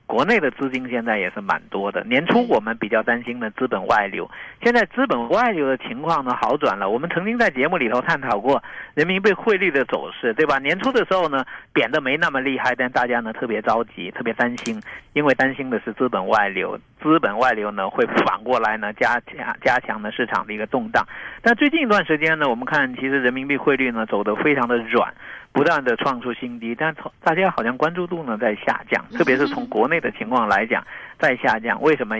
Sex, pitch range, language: male, 120-165 Hz, Chinese